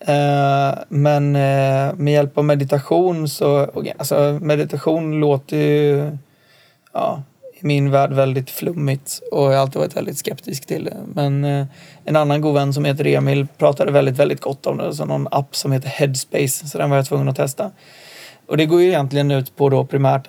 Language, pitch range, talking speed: Swedish, 135-155 Hz, 180 wpm